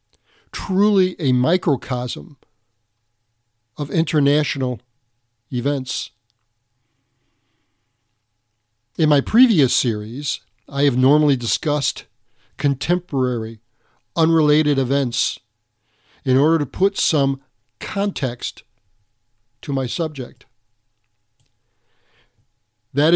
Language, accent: English, American